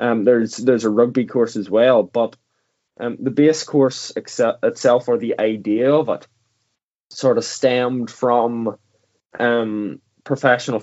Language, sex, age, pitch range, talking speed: English, male, 10-29, 105-125 Hz, 145 wpm